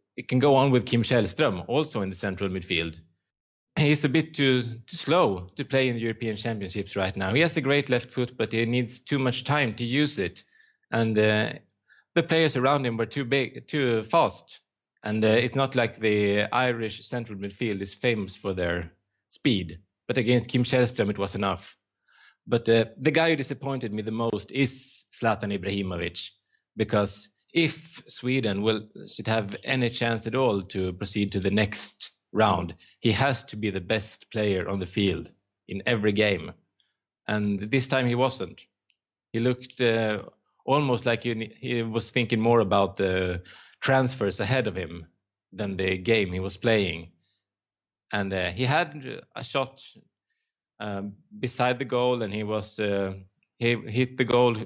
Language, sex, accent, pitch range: English, male, Norwegian, 100-125 Hz